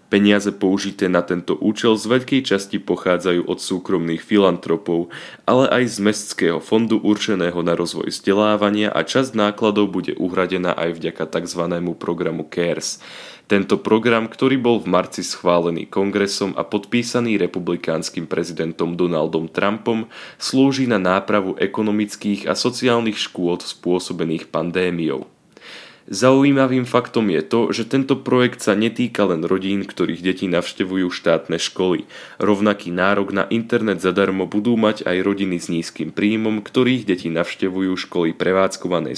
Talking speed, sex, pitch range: 135 wpm, male, 90-115 Hz